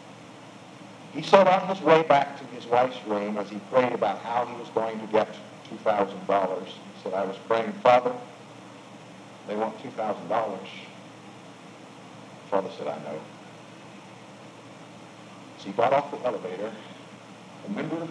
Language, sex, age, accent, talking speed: English, male, 60-79, American, 145 wpm